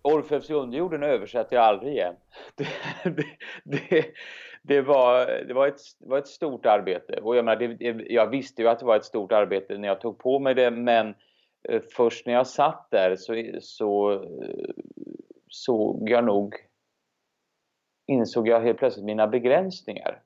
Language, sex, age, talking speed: Swedish, male, 30-49, 160 wpm